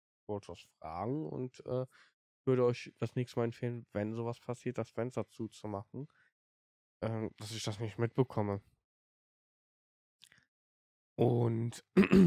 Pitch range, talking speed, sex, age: 100-115 Hz, 110 wpm, male, 10-29